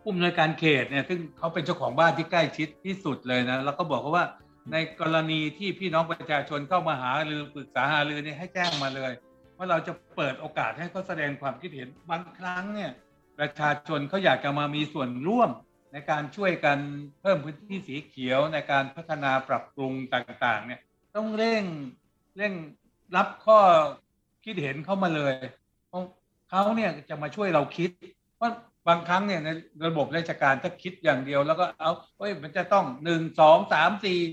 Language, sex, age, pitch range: Thai, male, 60-79, 140-180 Hz